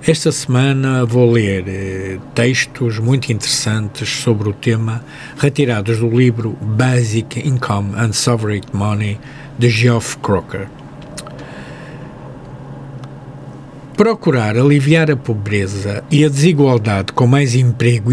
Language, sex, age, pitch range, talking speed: Portuguese, male, 50-69, 115-140 Hz, 105 wpm